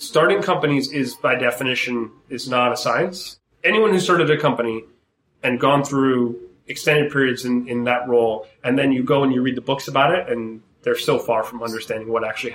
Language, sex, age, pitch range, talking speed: English, male, 30-49, 120-145 Hz, 200 wpm